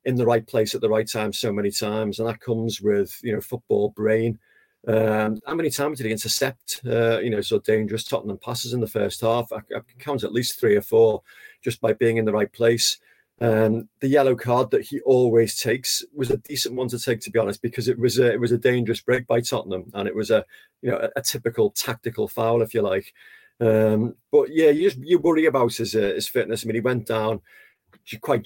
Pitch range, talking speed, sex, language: 110-130 Hz, 235 wpm, male, English